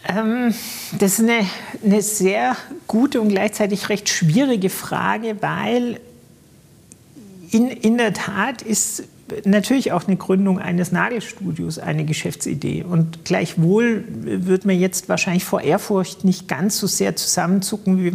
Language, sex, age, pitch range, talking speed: German, male, 50-69, 180-220 Hz, 130 wpm